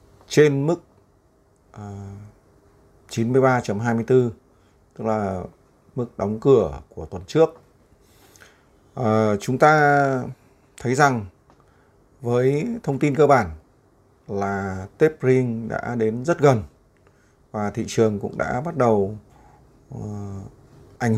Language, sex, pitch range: Vietnamese, male, 105-130 Hz